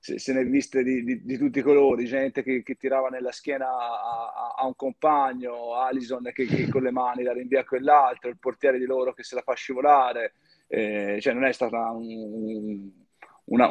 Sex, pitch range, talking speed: male, 115-145 Hz, 215 wpm